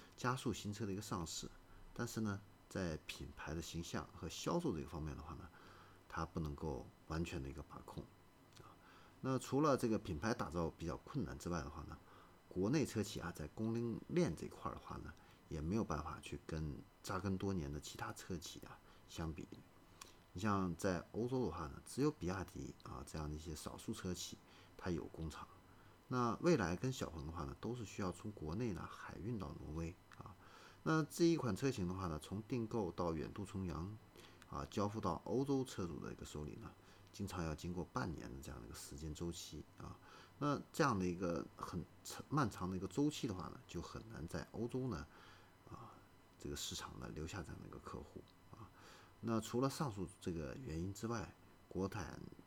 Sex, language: male, Chinese